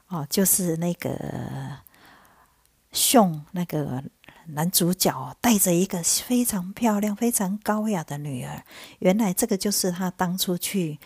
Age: 50-69